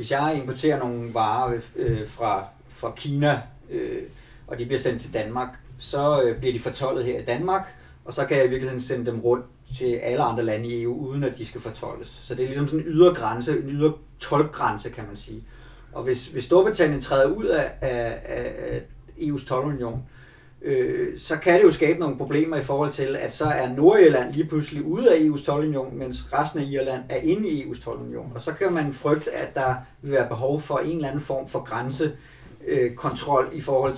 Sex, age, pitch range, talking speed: male, 30-49, 125-155 Hz, 195 wpm